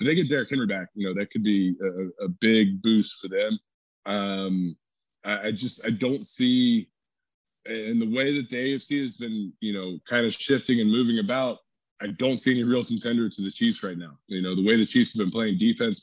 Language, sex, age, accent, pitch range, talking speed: English, male, 20-39, American, 100-130 Hz, 230 wpm